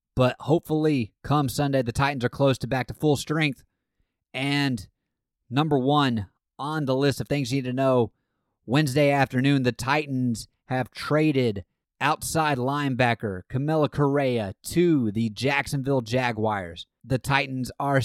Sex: male